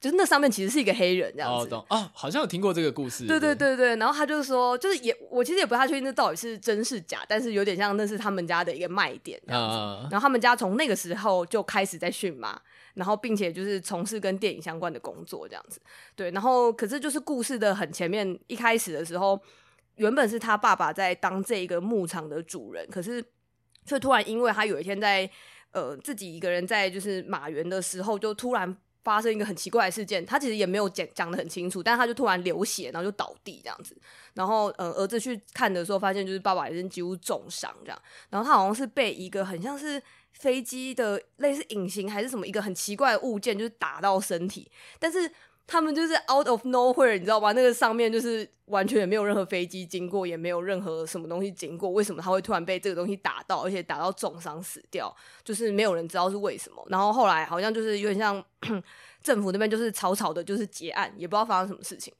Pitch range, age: 185-235 Hz, 20-39